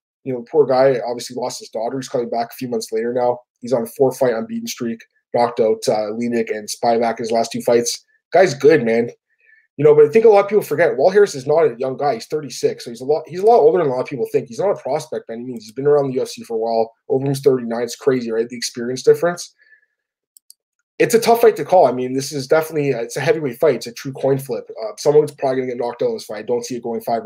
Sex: male